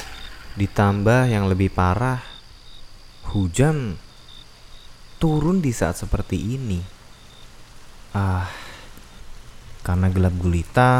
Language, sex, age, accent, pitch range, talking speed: Indonesian, male, 20-39, native, 95-115 Hz, 75 wpm